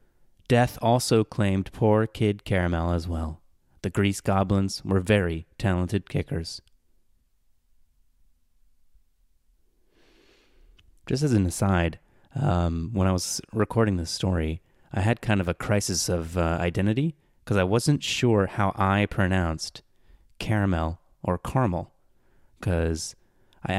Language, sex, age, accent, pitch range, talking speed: English, male, 30-49, American, 90-115 Hz, 120 wpm